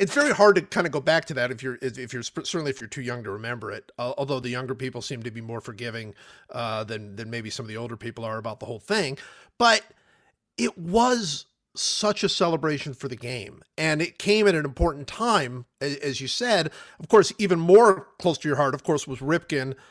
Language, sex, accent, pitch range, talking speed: English, male, American, 125-170 Hz, 230 wpm